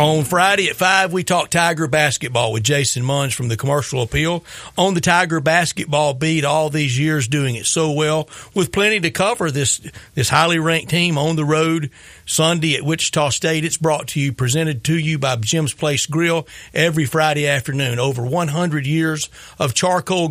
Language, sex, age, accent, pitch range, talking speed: English, male, 40-59, American, 140-170 Hz, 185 wpm